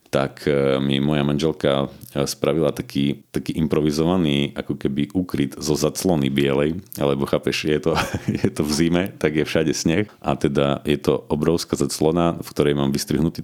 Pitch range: 70-80 Hz